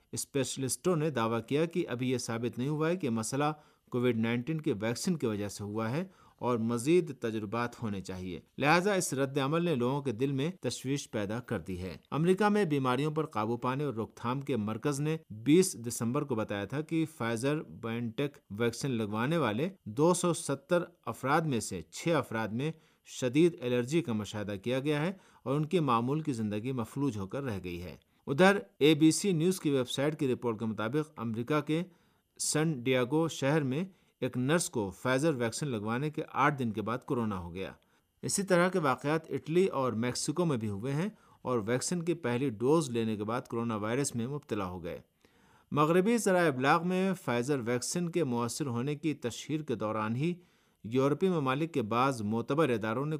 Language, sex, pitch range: Urdu, male, 115-155 Hz